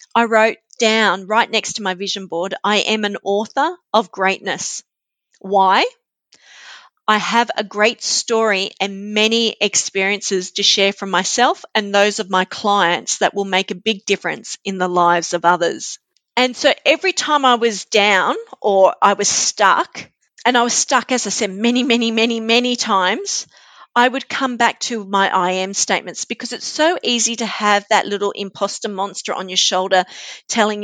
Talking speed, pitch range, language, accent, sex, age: 175 wpm, 195-235 Hz, English, Australian, female, 40-59